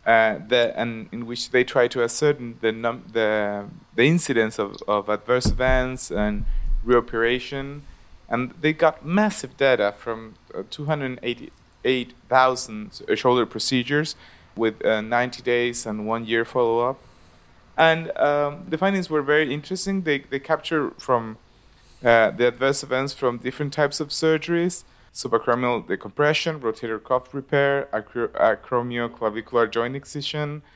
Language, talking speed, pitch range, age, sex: English, 125 wpm, 110-140 Hz, 30-49, male